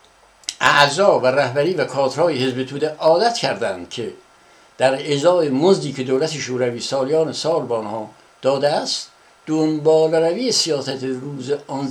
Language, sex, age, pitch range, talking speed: Persian, male, 60-79, 130-160 Hz, 130 wpm